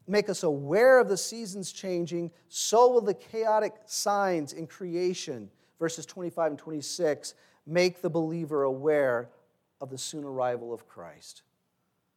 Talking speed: 140 wpm